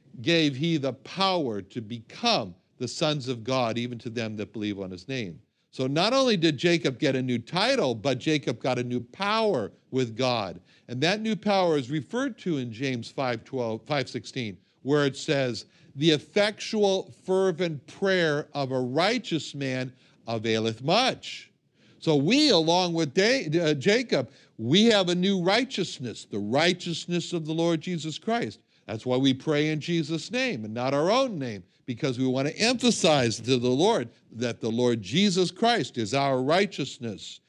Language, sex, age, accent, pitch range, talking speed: English, male, 60-79, American, 125-175 Hz, 165 wpm